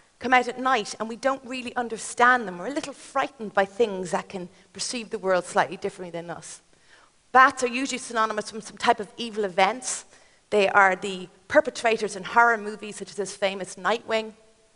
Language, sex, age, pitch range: Chinese, female, 30-49, 210-255 Hz